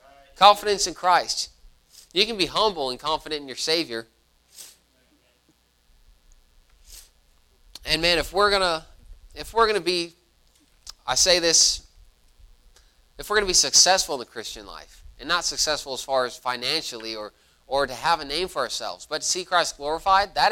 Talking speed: 160 wpm